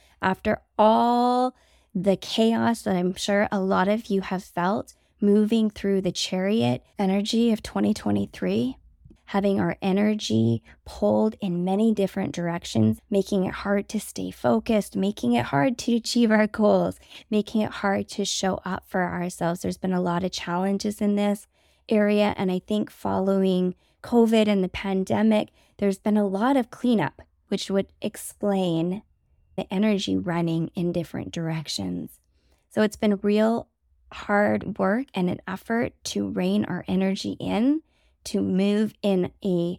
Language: English